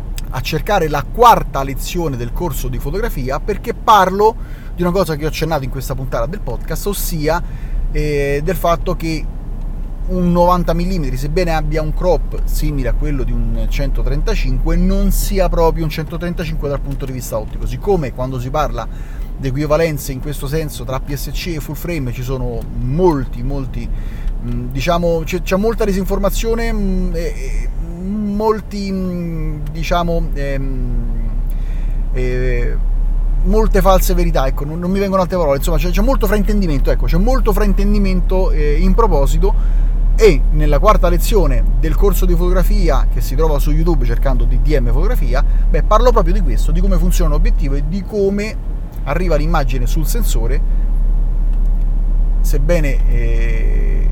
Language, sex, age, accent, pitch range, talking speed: Italian, male, 30-49, native, 135-180 Hz, 150 wpm